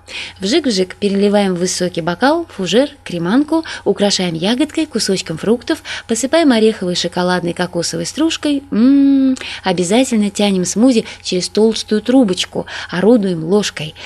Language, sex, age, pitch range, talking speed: Russian, female, 20-39, 180-250 Hz, 100 wpm